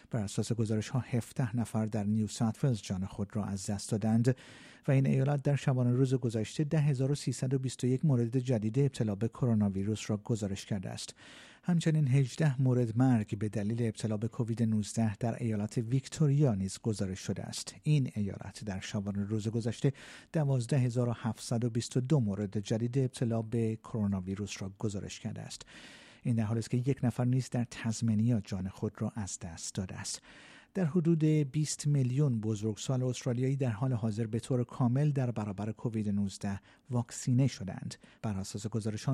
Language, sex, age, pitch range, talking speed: Persian, male, 50-69, 110-135 Hz, 160 wpm